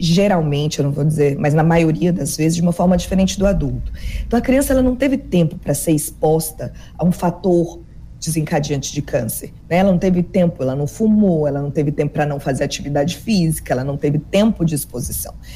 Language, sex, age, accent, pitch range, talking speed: Portuguese, female, 20-39, Brazilian, 160-200 Hz, 210 wpm